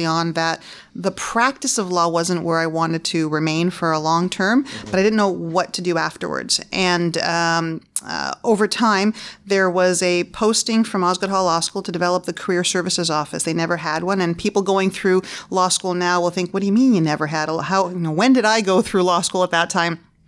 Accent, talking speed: American, 225 wpm